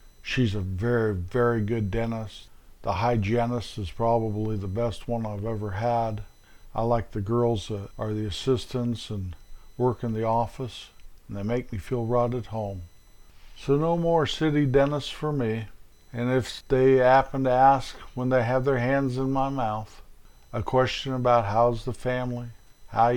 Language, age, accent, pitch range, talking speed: English, 50-69, American, 110-130 Hz, 170 wpm